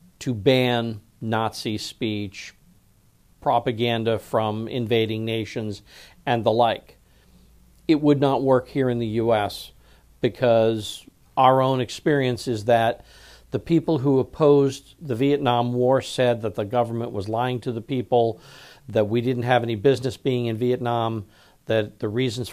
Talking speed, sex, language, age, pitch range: 140 wpm, male, Slovak, 50-69, 105-130 Hz